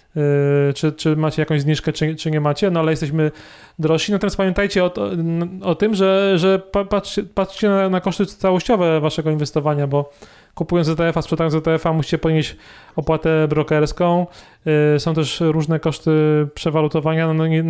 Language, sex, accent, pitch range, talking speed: Polish, male, native, 150-165 Hz, 165 wpm